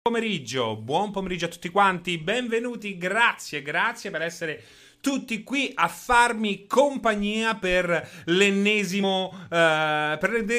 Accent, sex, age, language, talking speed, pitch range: native, male, 30-49, Italian, 120 wpm, 130-190 Hz